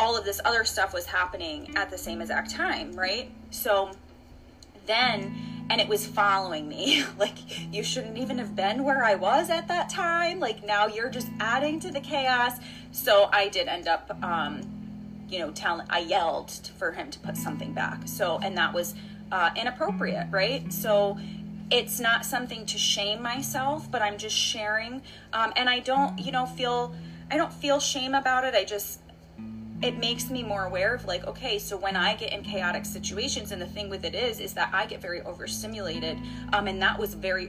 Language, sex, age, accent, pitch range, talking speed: English, female, 30-49, American, 185-245 Hz, 195 wpm